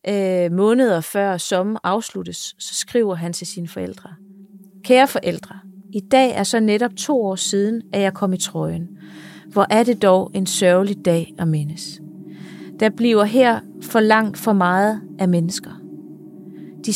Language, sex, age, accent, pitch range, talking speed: Danish, female, 30-49, native, 180-210 Hz, 155 wpm